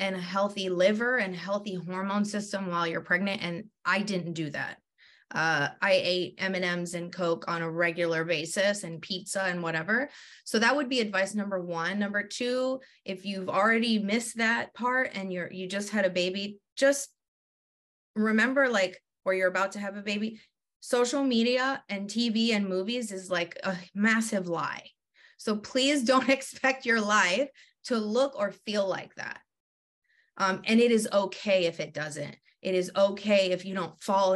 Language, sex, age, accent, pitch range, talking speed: English, female, 20-39, American, 180-220 Hz, 175 wpm